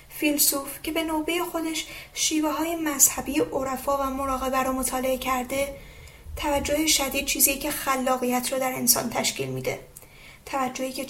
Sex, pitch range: female, 260-310 Hz